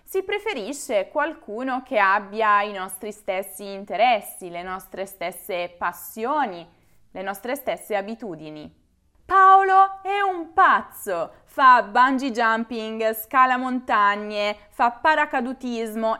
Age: 20-39